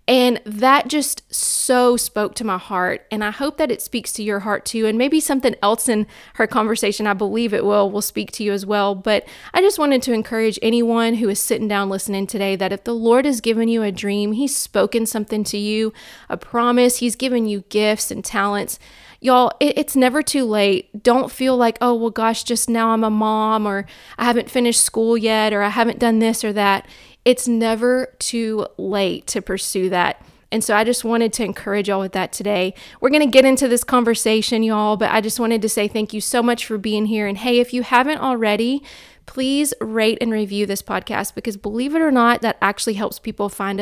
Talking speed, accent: 220 wpm, American